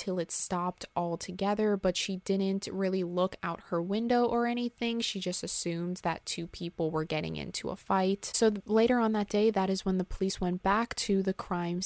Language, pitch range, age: English, 180-215 Hz, 20-39